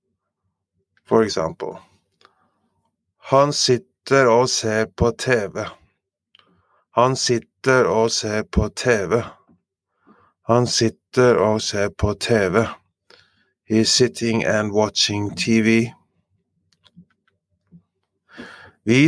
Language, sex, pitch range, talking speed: English, male, 100-125 Hz, 80 wpm